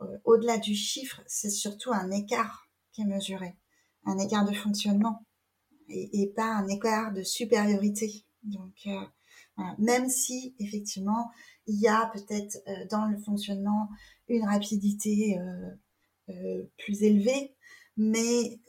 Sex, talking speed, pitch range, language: female, 130 wpm, 195-230 Hz, French